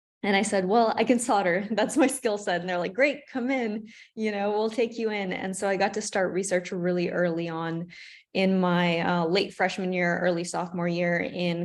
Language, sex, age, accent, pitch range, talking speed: English, female, 20-39, American, 175-210 Hz, 220 wpm